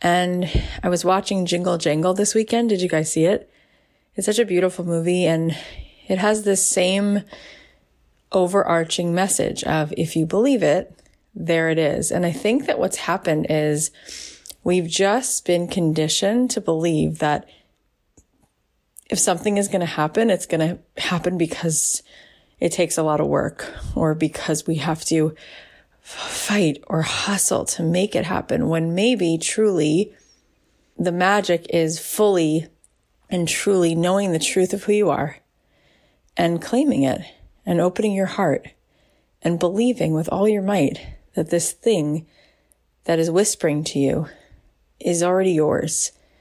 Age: 20-39